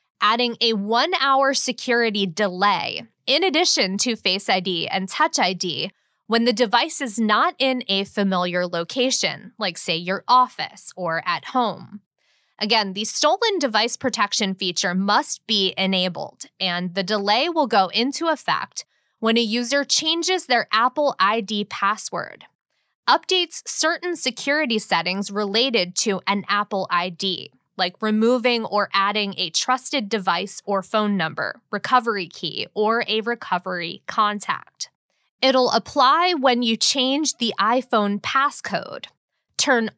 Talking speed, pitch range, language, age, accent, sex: 130 wpm, 195-255 Hz, English, 20-39, American, female